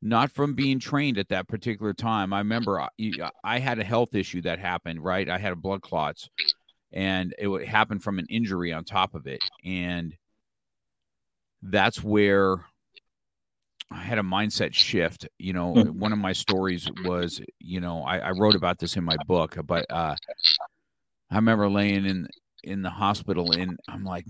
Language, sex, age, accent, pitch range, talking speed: English, male, 50-69, American, 90-110 Hz, 175 wpm